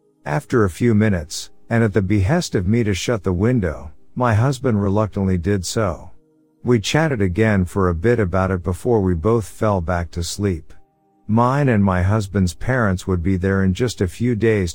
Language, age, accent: English, 50-69, American